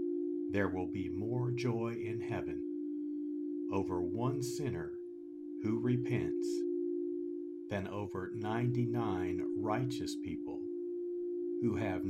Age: 50-69